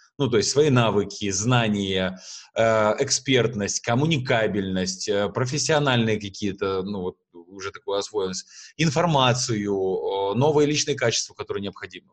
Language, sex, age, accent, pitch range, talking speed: Russian, male, 20-39, native, 100-130 Hz, 105 wpm